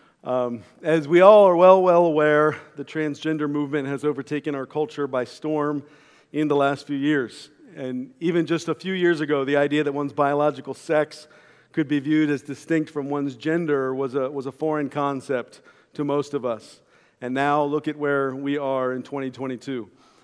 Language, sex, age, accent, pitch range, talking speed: English, male, 50-69, American, 140-160 Hz, 180 wpm